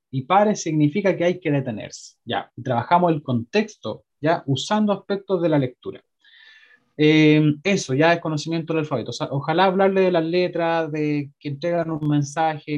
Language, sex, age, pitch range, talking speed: Spanish, male, 20-39, 145-180 Hz, 170 wpm